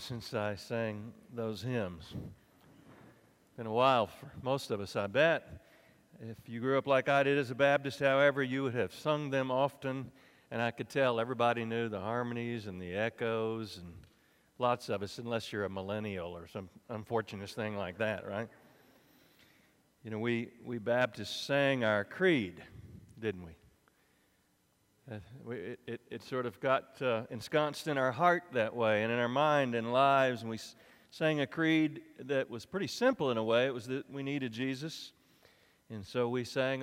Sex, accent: male, American